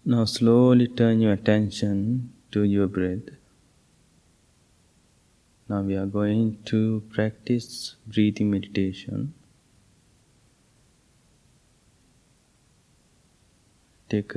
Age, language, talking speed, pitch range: 20-39, English, 70 wpm, 95-110 Hz